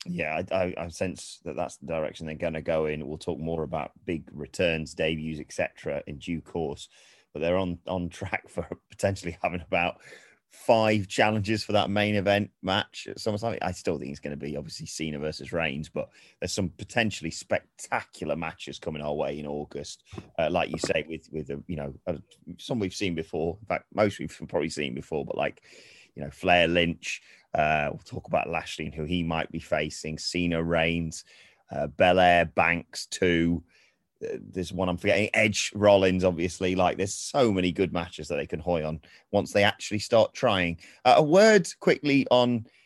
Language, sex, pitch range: English, male, 80-110 Hz